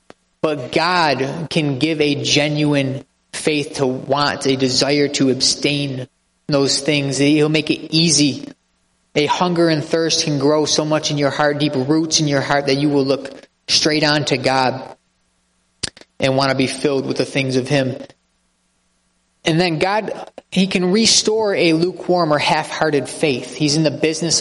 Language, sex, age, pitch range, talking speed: English, male, 20-39, 135-160 Hz, 165 wpm